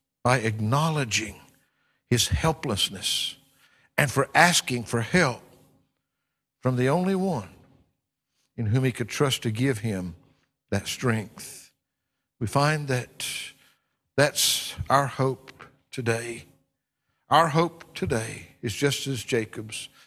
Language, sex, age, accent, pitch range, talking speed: English, male, 60-79, American, 125-165 Hz, 110 wpm